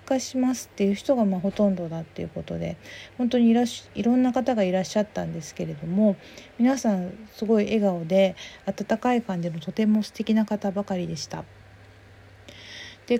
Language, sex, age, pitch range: Japanese, female, 40-59, 175-225 Hz